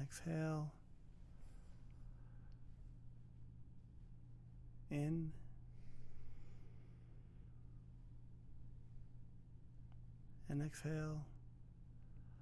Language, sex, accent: English, male, American